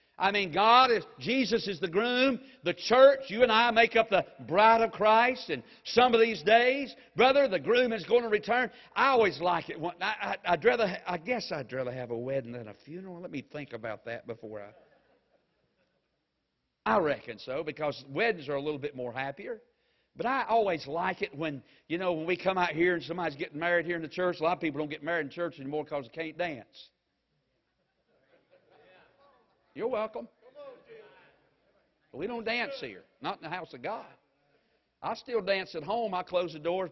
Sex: male